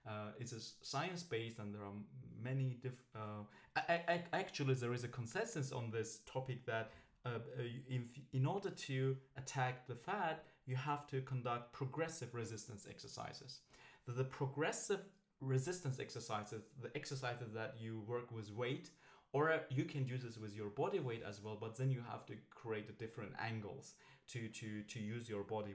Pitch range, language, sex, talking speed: 110-140 Hz, English, male, 160 wpm